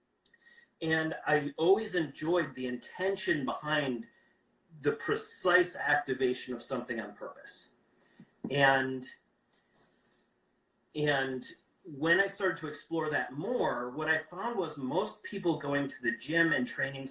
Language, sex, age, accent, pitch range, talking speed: English, male, 30-49, American, 130-170 Hz, 125 wpm